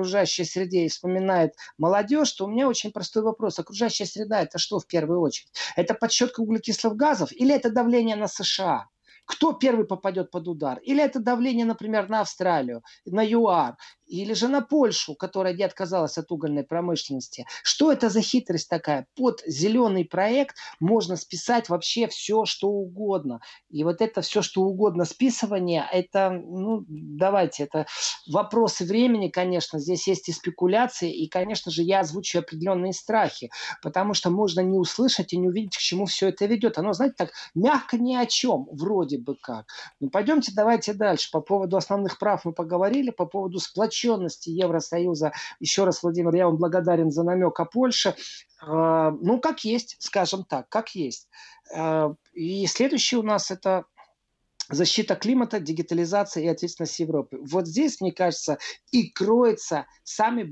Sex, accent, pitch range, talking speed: male, native, 170-225 Hz, 160 wpm